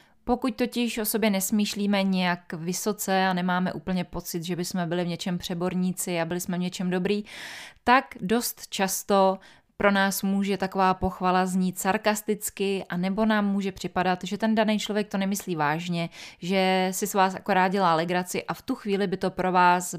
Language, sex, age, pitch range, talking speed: Czech, female, 20-39, 180-205 Hz, 180 wpm